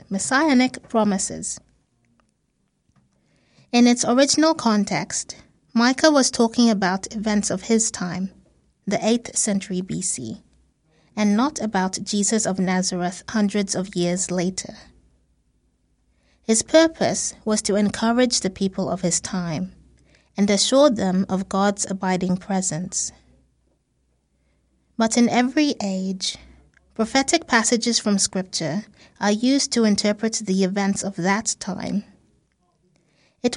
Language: English